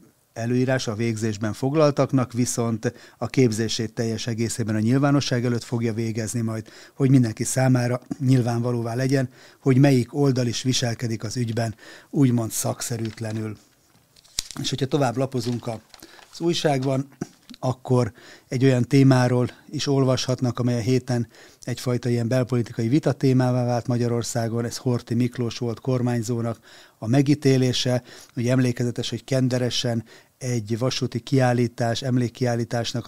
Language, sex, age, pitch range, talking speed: Hungarian, male, 30-49, 115-130 Hz, 120 wpm